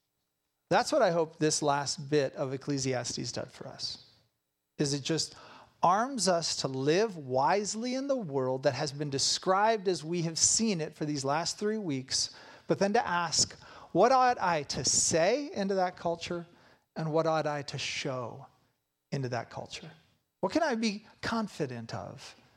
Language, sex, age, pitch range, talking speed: English, male, 40-59, 135-205 Hz, 170 wpm